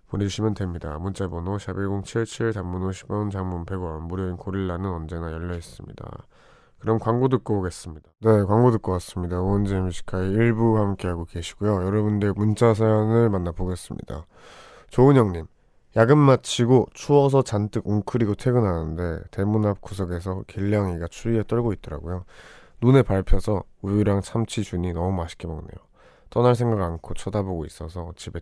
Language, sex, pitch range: Korean, male, 90-110 Hz